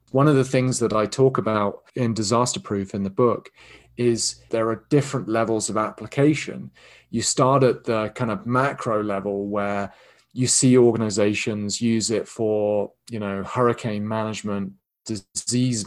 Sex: male